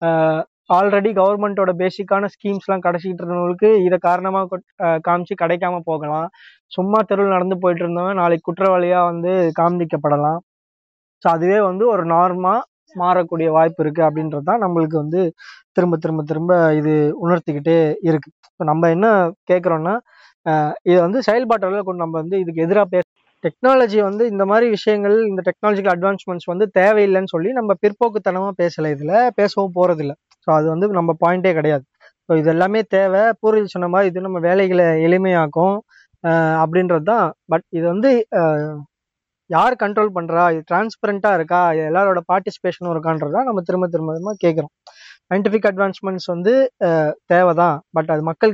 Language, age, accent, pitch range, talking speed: Tamil, 20-39, native, 165-200 Hz, 135 wpm